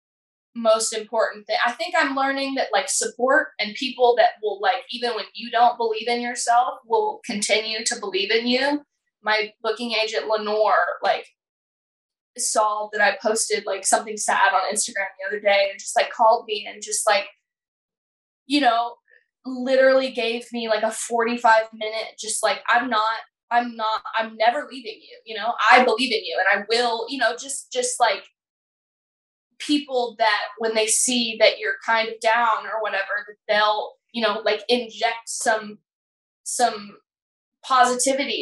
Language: English